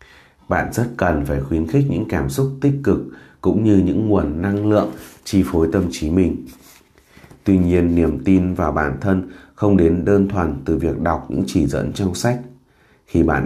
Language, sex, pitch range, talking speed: Vietnamese, male, 75-100 Hz, 190 wpm